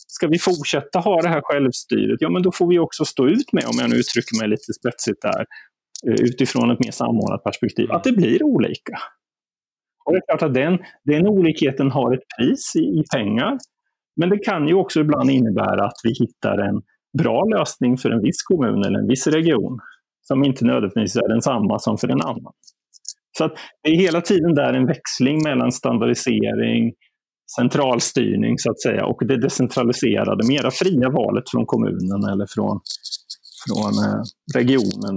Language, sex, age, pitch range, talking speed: Swedish, male, 30-49, 125-175 Hz, 180 wpm